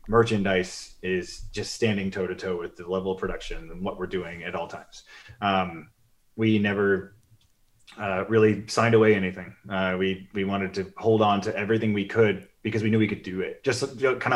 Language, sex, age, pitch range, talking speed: English, male, 30-49, 100-120 Hz, 195 wpm